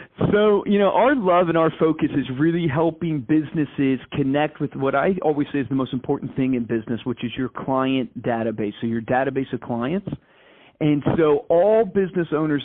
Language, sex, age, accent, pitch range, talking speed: English, male, 40-59, American, 130-165 Hz, 190 wpm